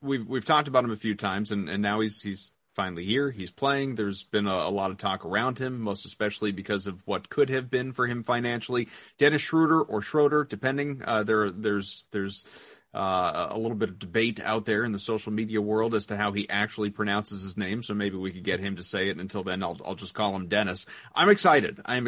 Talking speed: 240 wpm